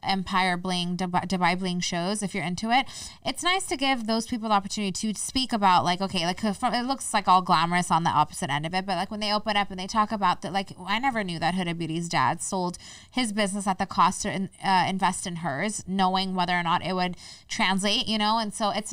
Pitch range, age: 175-210 Hz, 20-39